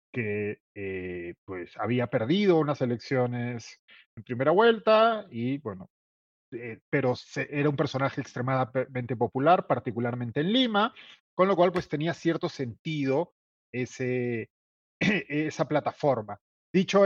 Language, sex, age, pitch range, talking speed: Spanish, male, 30-49, 125-165 Hz, 120 wpm